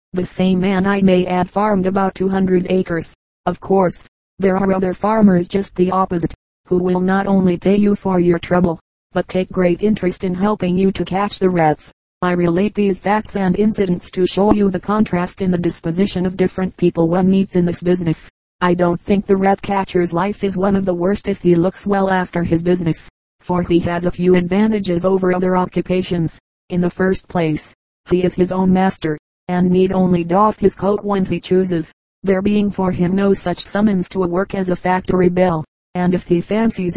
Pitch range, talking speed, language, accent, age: 175-195 Hz, 205 wpm, English, American, 30-49